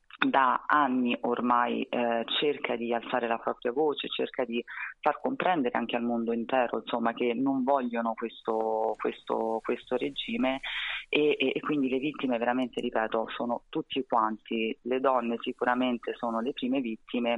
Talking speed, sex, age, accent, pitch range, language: 150 wpm, female, 30-49, native, 110-125 Hz, Italian